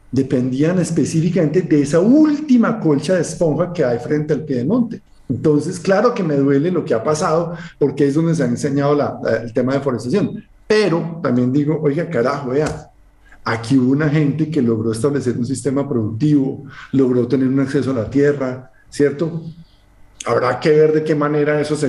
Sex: male